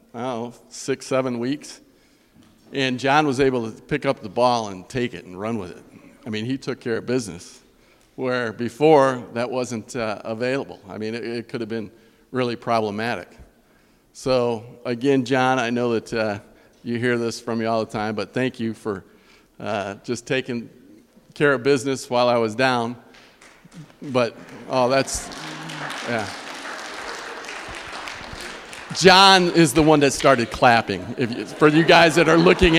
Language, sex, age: English, male, 50-69